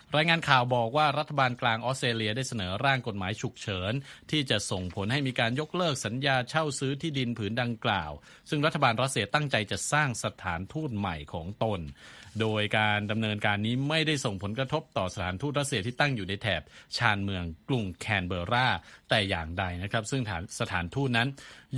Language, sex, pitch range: Thai, male, 100-135 Hz